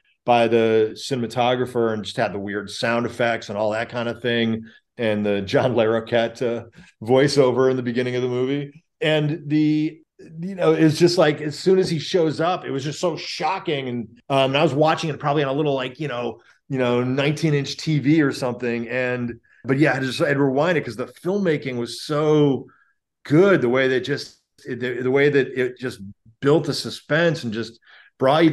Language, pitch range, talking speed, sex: English, 110-140 Hz, 205 wpm, male